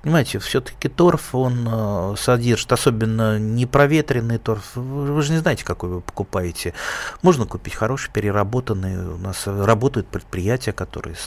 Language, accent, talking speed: Russian, native, 135 wpm